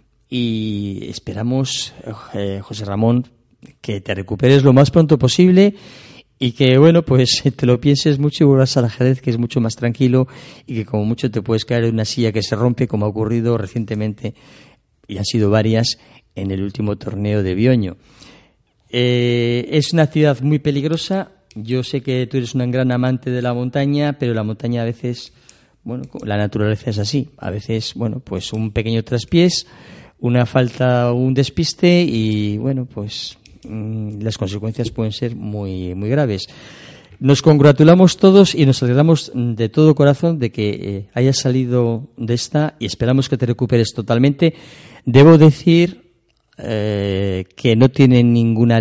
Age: 40-59